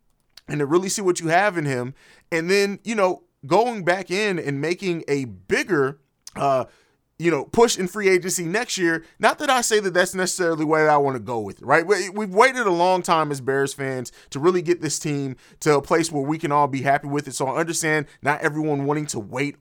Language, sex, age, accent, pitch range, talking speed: English, male, 30-49, American, 145-180 Hz, 235 wpm